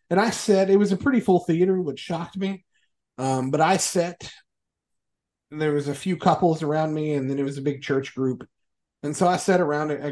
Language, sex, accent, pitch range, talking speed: English, male, American, 130-165 Hz, 225 wpm